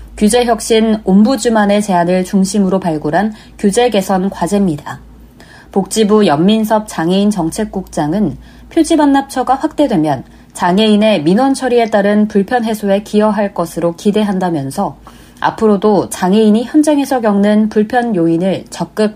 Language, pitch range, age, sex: Korean, 190-235 Hz, 30-49, female